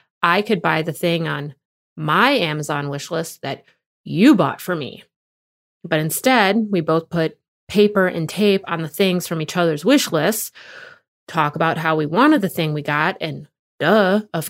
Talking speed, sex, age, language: 170 wpm, female, 30-49, English